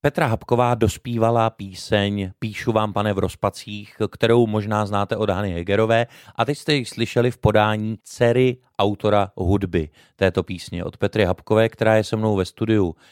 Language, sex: Czech, male